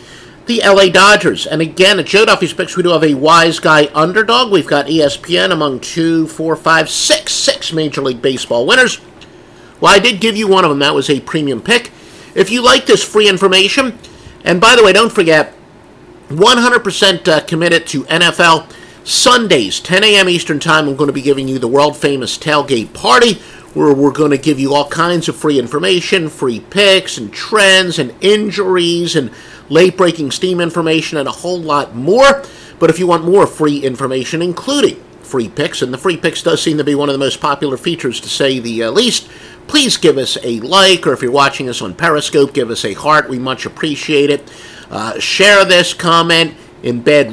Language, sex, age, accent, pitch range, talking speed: English, male, 50-69, American, 145-190 Hz, 195 wpm